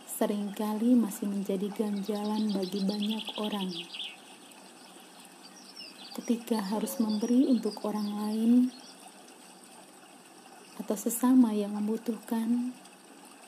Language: Indonesian